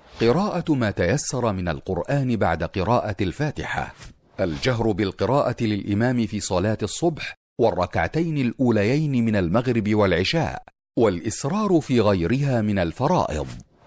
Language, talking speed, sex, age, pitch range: Arabic, 105 wpm, male, 50-69, 100-140 Hz